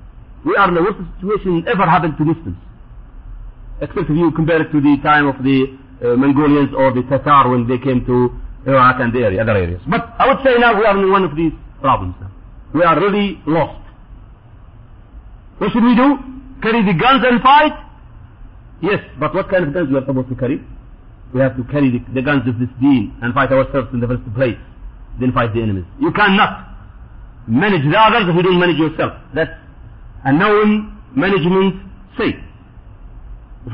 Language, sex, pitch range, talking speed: English, male, 130-215 Hz, 190 wpm